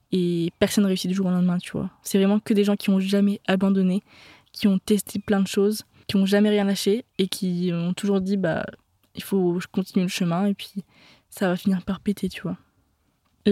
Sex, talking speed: female, 225 wpm